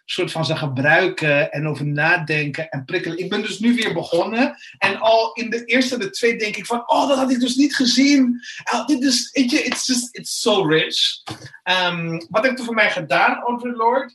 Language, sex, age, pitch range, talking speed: Dutch, male, 30-49, 170-230 Hz, 215 wpm